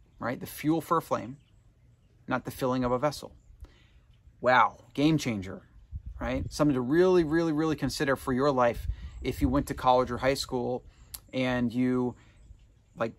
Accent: American